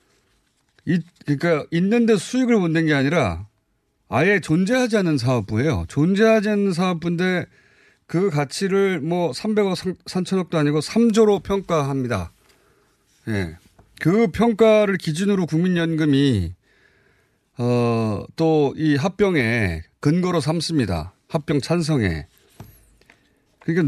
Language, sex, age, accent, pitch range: Korean, male, 30-49, native, 115-180 Hz